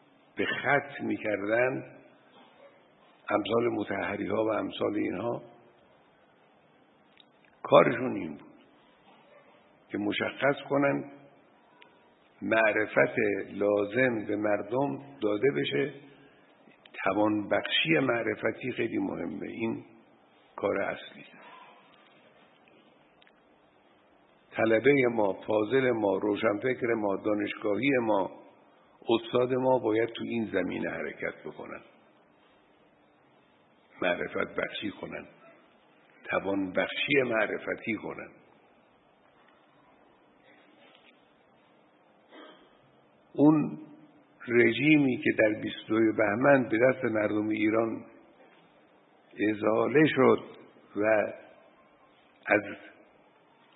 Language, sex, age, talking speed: Persian, male, 60-79, 75 wpm